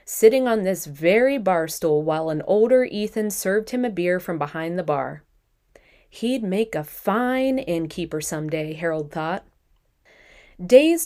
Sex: female